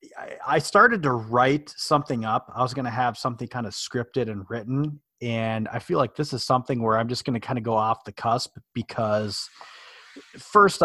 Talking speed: 195 wpm